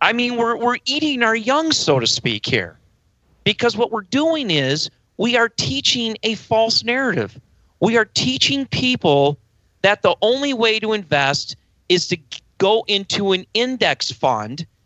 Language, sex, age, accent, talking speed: English, male, 40-59, American, 160 wpm